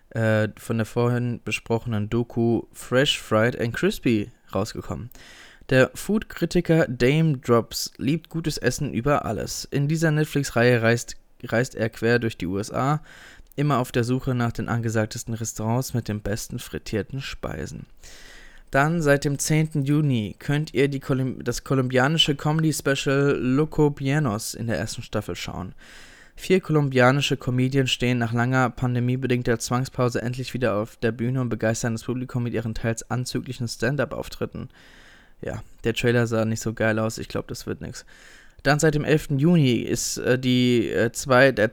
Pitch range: 115-140 Hz